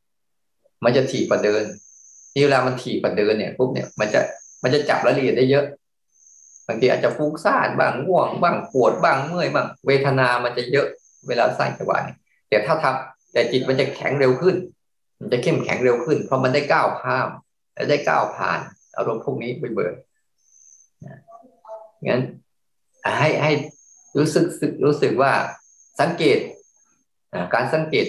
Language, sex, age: Thai, male, 20-39